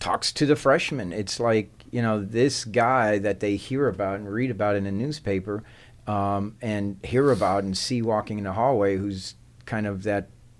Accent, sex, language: American, male, English